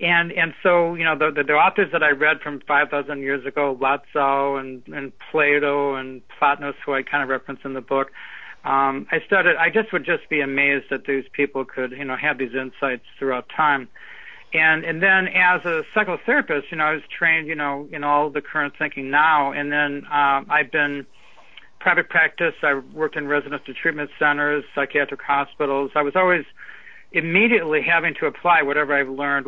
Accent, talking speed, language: American, 195 wpm, English